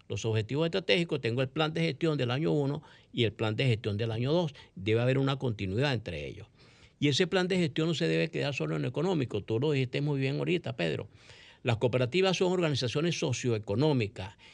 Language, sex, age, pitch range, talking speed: Spanish, male, 50-69, 125-175 Hz, 205 wpm